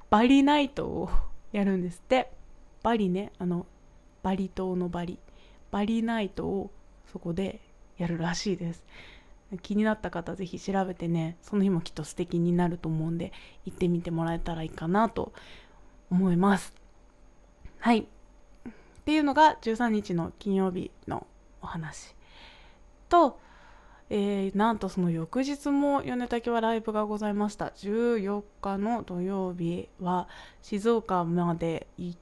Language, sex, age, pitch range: Japanese, female, 20-39, 175-220 Hz